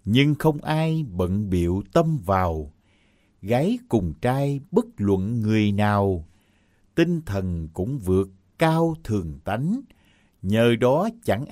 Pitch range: 100-155 Hz